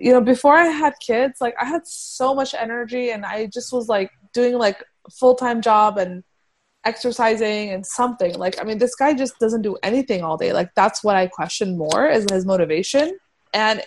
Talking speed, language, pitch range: 200 wpm, English, 200-245 Hz